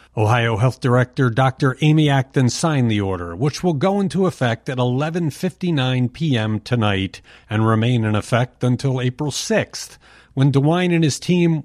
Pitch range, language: 110-155 Hz, English